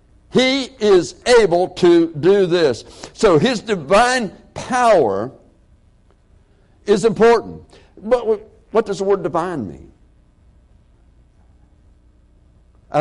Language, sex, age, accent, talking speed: English, male, 60-79, American, 90 wpm